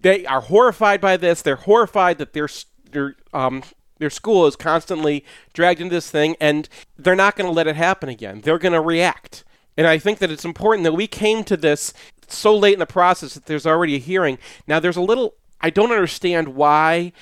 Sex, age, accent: male, 40-59, American